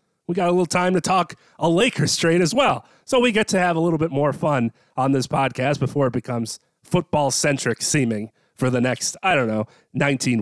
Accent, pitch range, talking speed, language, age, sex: American, 125-170 Hz, 215 wpm, English, 30-49, male